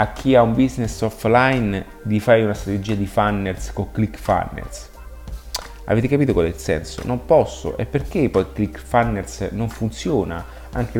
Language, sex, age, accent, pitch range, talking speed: Italian, male, 30-49, native, 90-115 Hz, 170 wpm